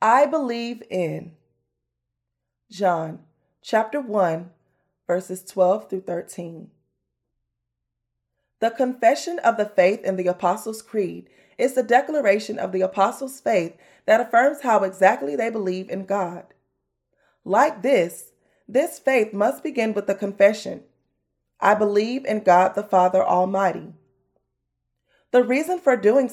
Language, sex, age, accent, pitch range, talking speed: English, female, 20-39, American, 180-235 Hz, 125 wpm